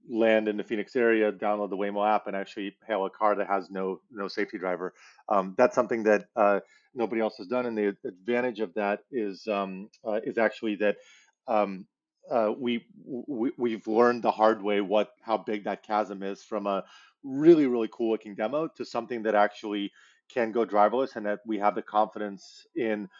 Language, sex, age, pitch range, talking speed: English, male, 30-49, 100-115 Hz, 195 wpm